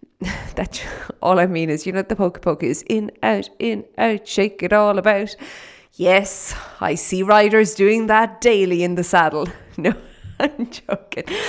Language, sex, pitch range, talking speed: English, female, 180-240 Hz, 170 wpm